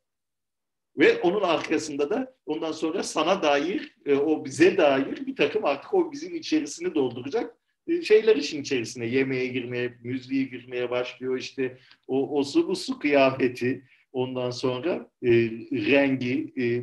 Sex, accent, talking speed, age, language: male, native, 130 wpm, 50-69, Turkish